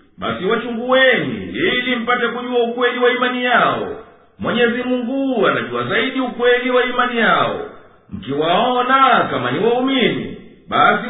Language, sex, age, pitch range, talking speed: Swahili, male, 50-69, 240-250 Hz, 120 wpm